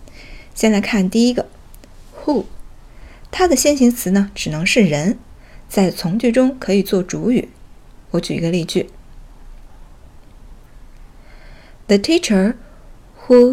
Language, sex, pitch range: Chinese, female, 190-245 Hz